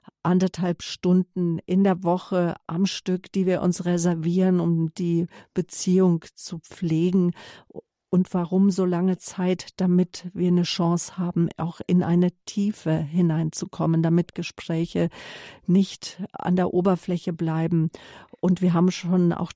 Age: 50-69